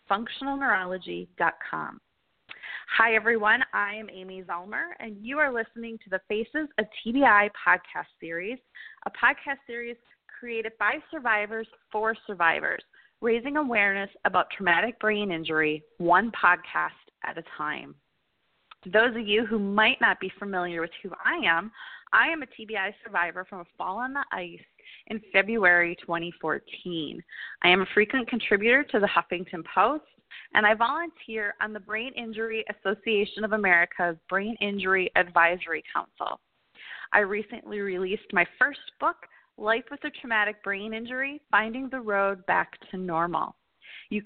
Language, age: English, 30-49